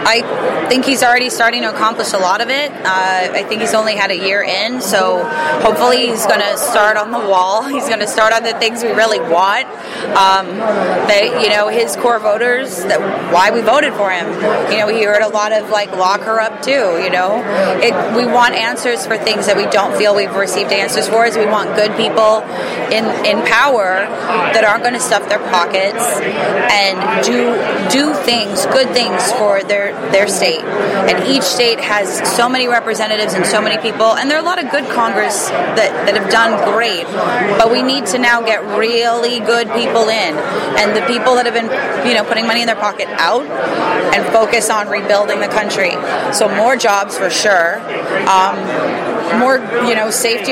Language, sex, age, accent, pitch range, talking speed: English, female, 20-39, American, 205-235 Hz, 200 wpm